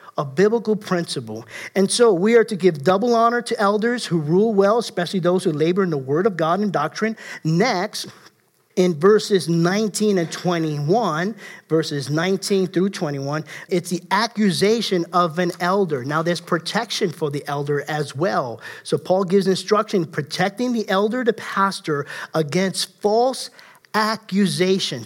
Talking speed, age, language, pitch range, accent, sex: 150 wpm, 50-69, English, 170-215 Hz, American, male